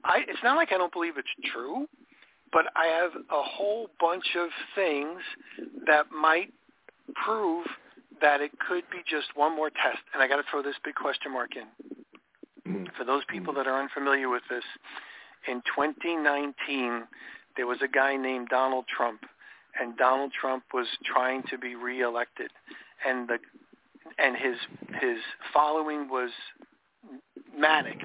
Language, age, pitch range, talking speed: English, 40-59, 135-175 Hz, 155 wpm